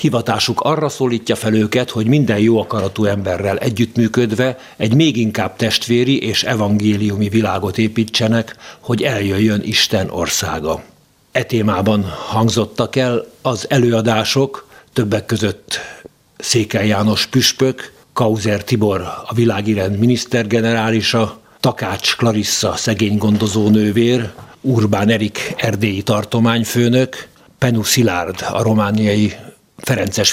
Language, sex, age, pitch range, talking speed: Hungarian, male, 60-79, 105-120 Hz, 105 wpm